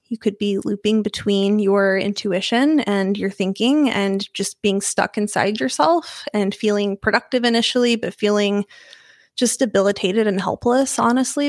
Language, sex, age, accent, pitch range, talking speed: English, female, 20-39, American, 195-235 Hz, 140 wpm